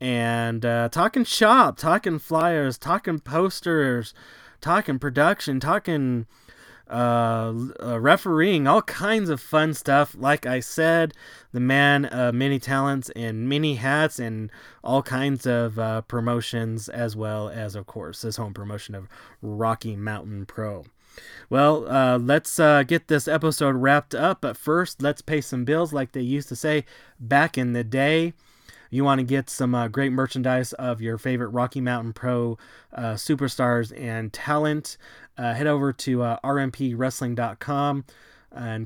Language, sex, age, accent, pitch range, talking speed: English, male, 20-39, American, 120-155 Hz, 145 wpm